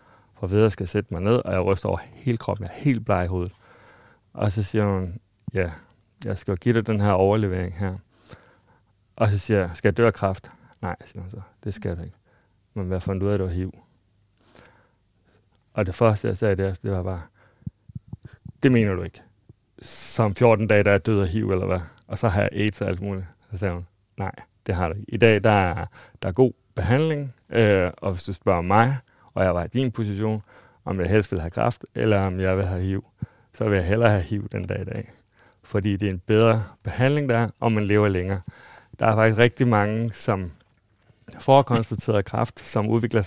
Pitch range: 95-115 Hz